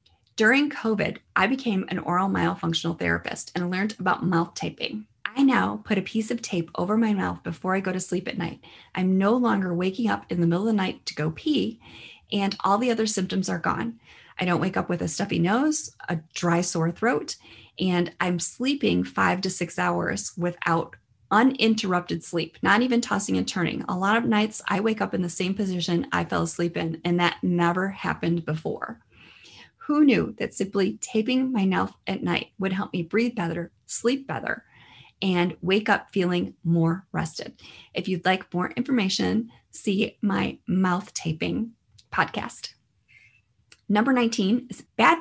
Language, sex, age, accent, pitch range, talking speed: English, female, 30-49, American, 170-220 Hz, 175 wpm